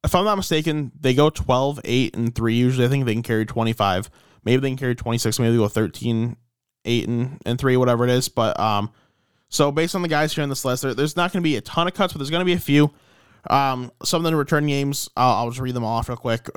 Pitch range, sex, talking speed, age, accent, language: 115-140 Hz, male, 265 wpm, 20-39, American, English